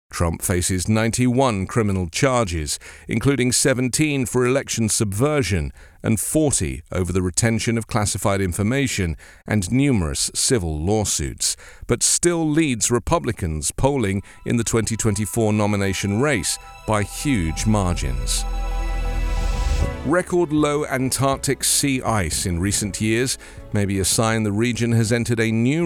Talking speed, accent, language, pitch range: 125 wpm, British, English, 90-125 Hz